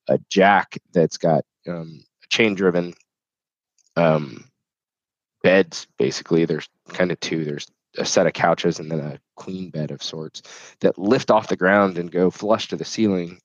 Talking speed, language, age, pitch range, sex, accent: 165 wpm, English, 20-39, 85-100 Hz, male, American